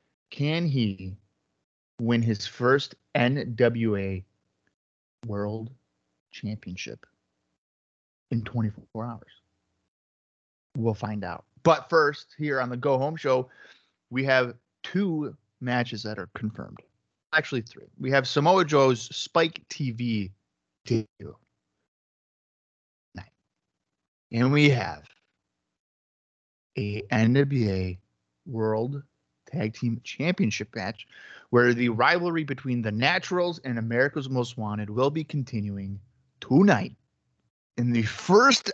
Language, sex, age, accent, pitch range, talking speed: English, male, 30-49, American, 100-130 Hz, 100 wpm